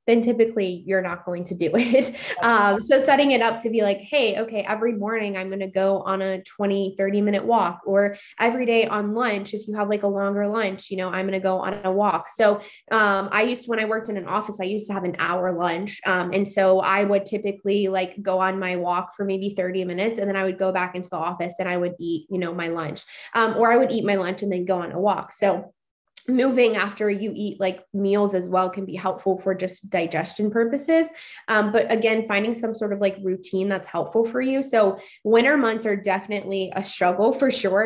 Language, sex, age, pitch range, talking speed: English, female, 20-39, 185-215 Hz, 240 wpm